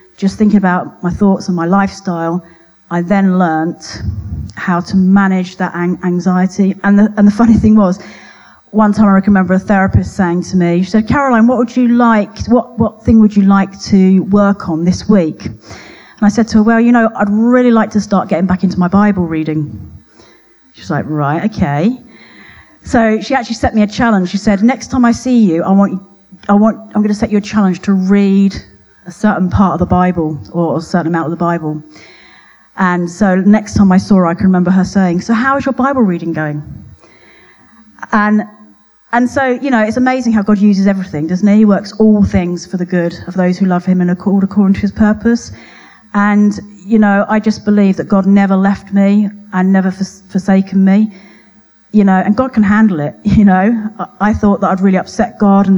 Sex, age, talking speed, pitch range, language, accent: female, 40-59, 210 wpm, 180-215 Hz, English, British